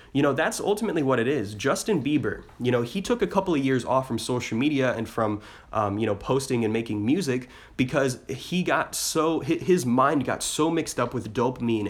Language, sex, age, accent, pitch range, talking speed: English, male, 20-39, American, 115-145 Hz, 210 wpm